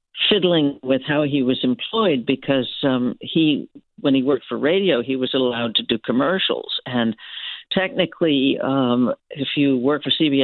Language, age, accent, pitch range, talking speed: English, 50-69, American, 120-145 Hz, 165 wpm